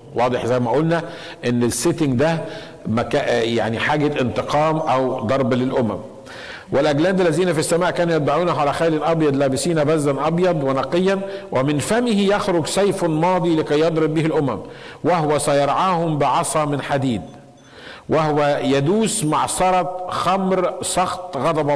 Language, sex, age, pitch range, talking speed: Arabic, male, 50-69, 120-160 Hz, 125 wpm